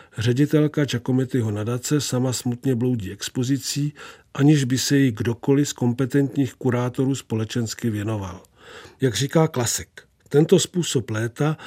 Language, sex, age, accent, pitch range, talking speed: Czech, male, 50-69, native, 120-145 Hz, 120 wpm